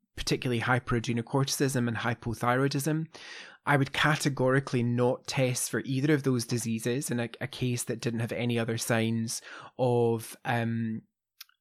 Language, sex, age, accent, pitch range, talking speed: English, male, 20-39, British, 120-140 Hz, 135 wpm